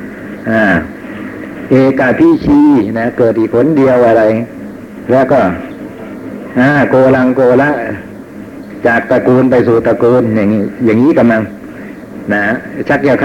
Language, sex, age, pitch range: Thai, male, 60-79, 115-140 Hz